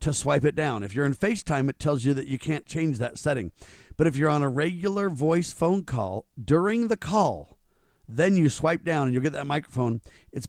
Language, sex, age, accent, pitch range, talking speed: English, male, 50-69, American, 130-165 Hz, 225 wpm